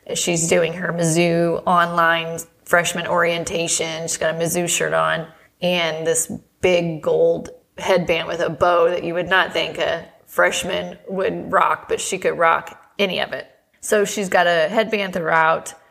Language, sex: English, female